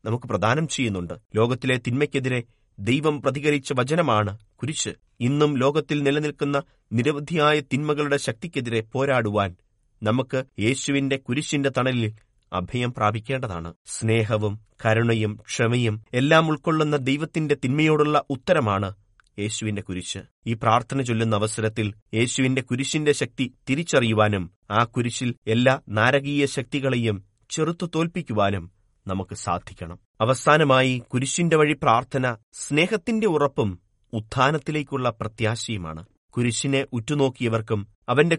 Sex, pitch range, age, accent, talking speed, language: male, 110-145 Hz, 30-49, native, 90 wpm, Malayalam